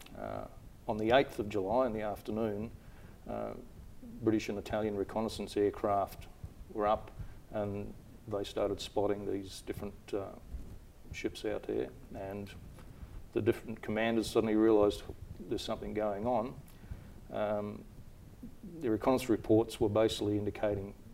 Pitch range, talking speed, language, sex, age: 100-110 Hz, 125 wpm, English, male, 40-59